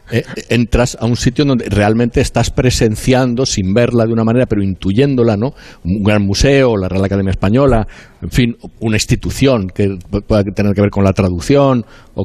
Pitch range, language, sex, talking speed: 95-120 Hz, Spanish, male, 175 wpm